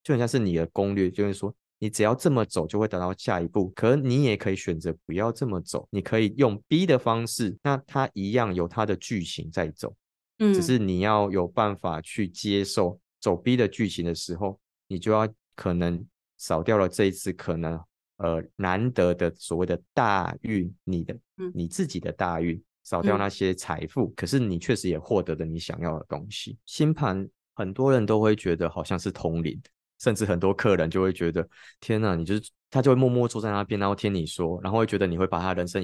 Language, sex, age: Chinese, male, 20-39